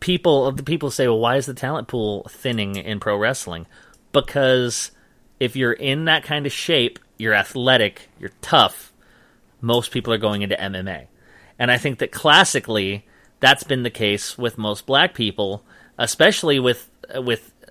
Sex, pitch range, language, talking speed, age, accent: male, 105-140 Hz, English, 165 wpm, 30-49, American